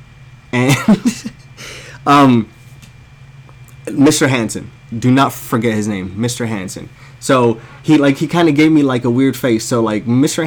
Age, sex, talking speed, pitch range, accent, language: 20-39, male, 145 wpm, 115-135 Hz, American, English